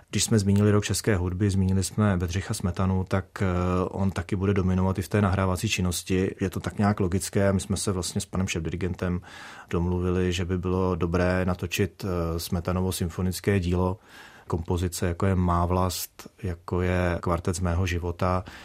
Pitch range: 90-100 Hz